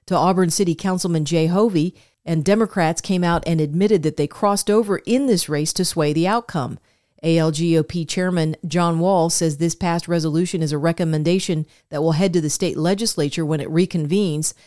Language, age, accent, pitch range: English, 40-59, American, 160-190 Hz